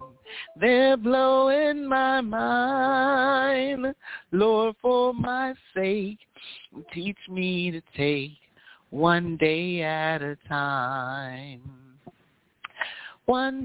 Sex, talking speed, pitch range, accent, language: male, 80 wpm, 180-265 Hz, American, English